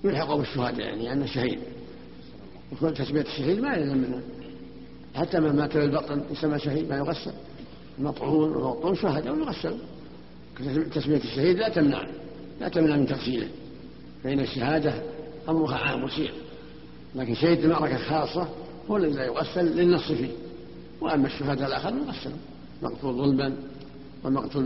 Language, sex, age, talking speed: Arabic, male, 60-79, 130 wpm